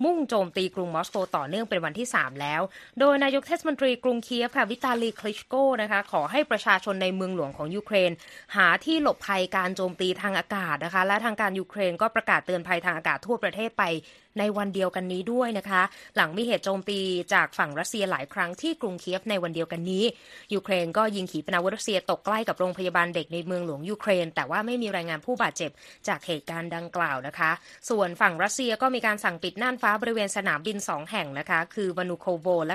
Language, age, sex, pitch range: Thai, 20-39, female, 170-215 Hz